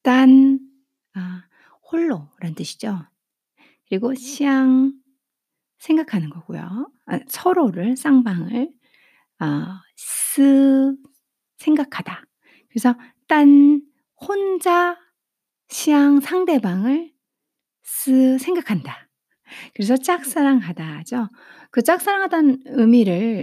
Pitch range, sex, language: 195-290 Hz, female, Korean